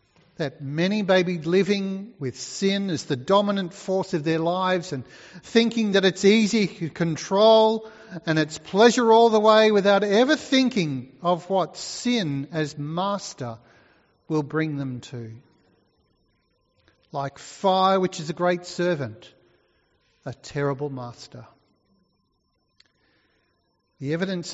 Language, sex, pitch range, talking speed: English, male, 150-205 Hz, 125 wpm